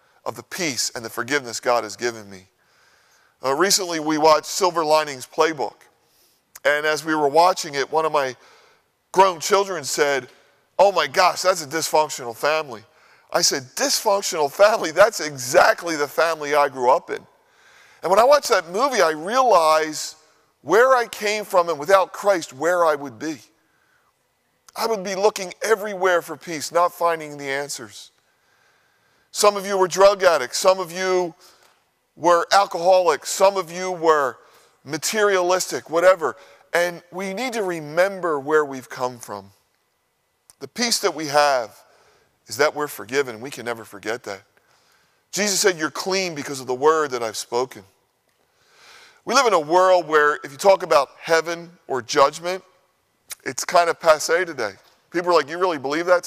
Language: English